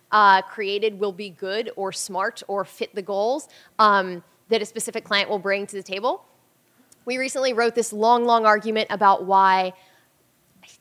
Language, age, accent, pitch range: English, 10-29, American, 200-245 Hz